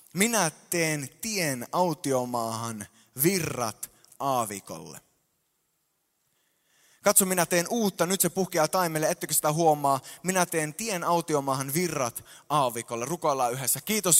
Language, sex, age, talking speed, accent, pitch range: Finnish, male, 20-39, 110 wpm, native, 140-185 Hz